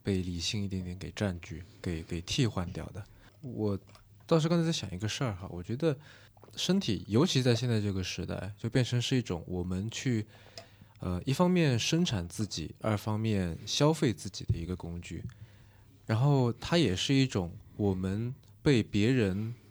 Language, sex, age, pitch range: Chinese, male, 20-39, 100-115 Hz